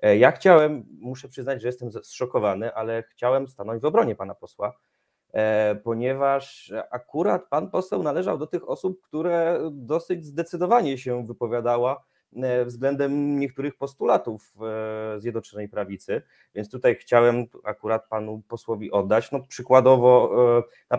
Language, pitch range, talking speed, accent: Polish, 110-135 Hz, 125 wpm, native